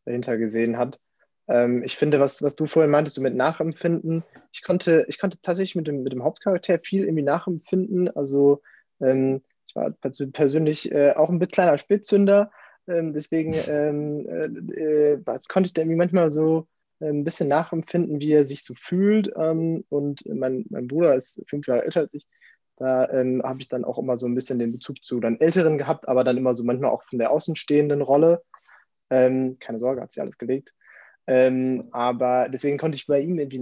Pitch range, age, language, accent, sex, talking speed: 130-160 Hz, 20-39, German, German, male, 195 wpm